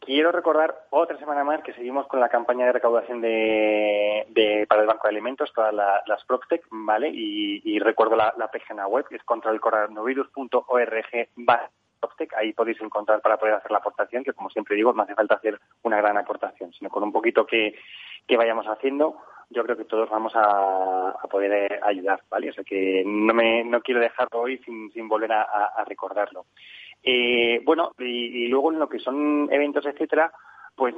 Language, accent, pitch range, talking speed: Spanish, Spanish, 110-130 Hz, 190 wpm